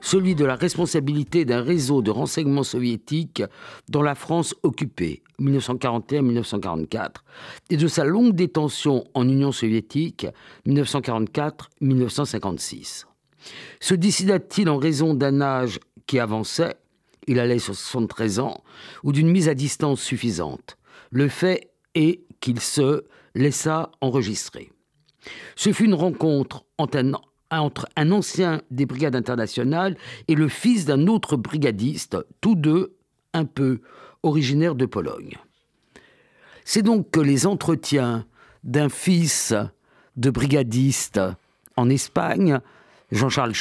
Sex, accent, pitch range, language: male, French, 125-160 Hz, French